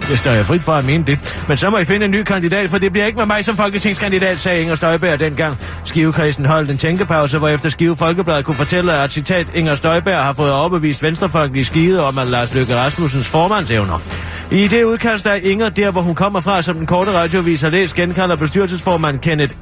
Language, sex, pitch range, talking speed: Danish, male, 135-180 Hz, 215 wpm